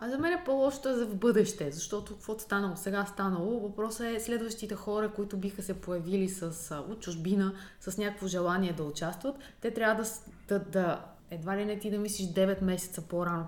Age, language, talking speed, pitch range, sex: 20-39, Bulgarian, 185 wpm, 180-230 Hz, female